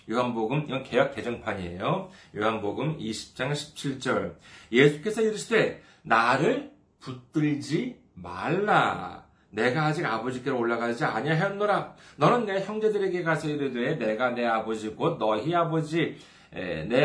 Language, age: Korean, 40-59